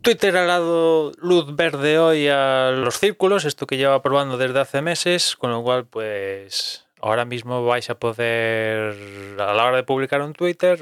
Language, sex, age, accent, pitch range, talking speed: Spanish, male, 20-39, Spanish, 115-145 Hz, 175 wpm